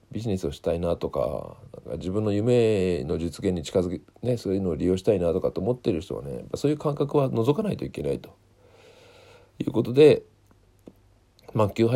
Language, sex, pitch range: Japanese, male, 95-135 Hz